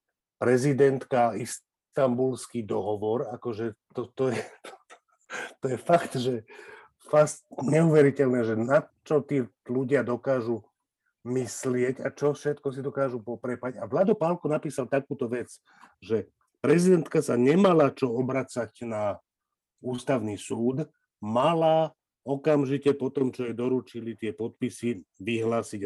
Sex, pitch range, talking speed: male, 120-150 Hz, 115 wpm